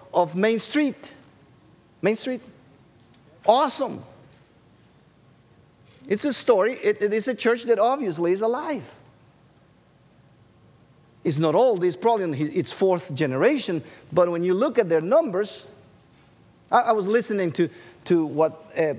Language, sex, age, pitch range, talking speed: English, male, 50-69, 150-230 Hz, 135 wpm